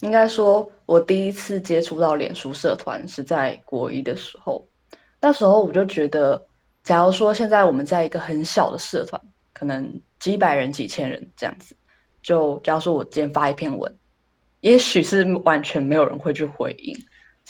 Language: Chinese